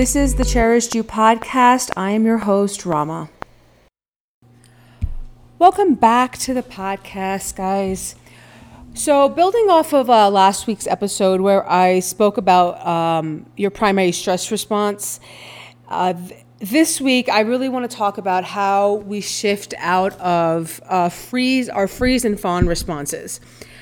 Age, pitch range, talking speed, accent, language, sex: 30-49, 180-230 Hz, 135 wpm, American, English, female